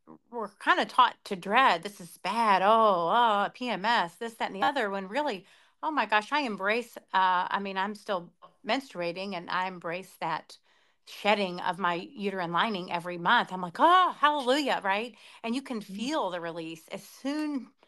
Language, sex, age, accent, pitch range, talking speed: English, female, 30-49, American, 180-235 Hz, 180 wpm